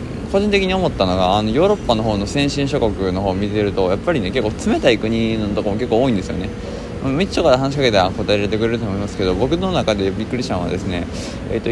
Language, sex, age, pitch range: Japanese, male, 20-39, 95-130 Hz